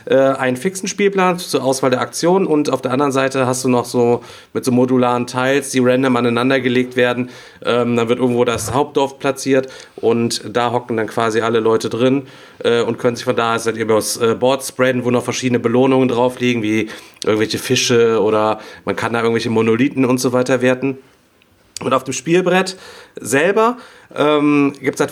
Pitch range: 120-140 Hz